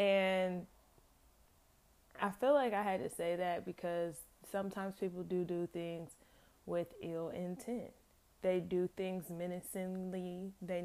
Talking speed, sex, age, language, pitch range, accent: 125 wpm, female, 20-39, English, 170-185 Hz, American